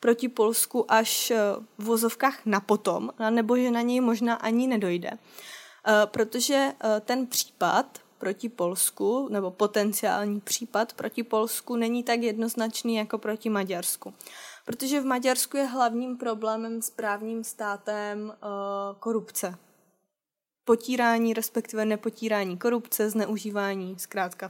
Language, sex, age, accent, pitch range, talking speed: Czech, female, 20-39, native, 210-235 Hz, 115 wpm